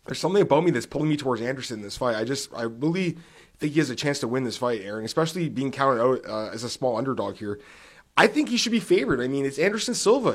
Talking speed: 275 wpm